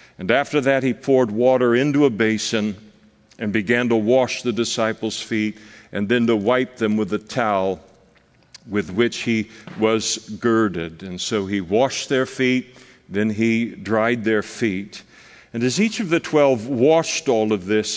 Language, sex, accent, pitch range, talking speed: English, male, American, 110-180 Hz, 165 wpm